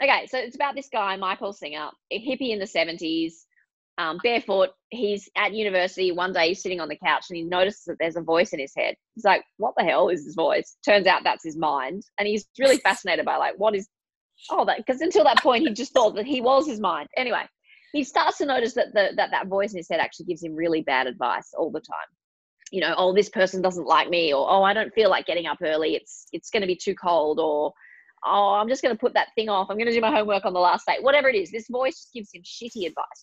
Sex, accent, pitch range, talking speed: female, Australian, 180-235 Hz, 260 wpm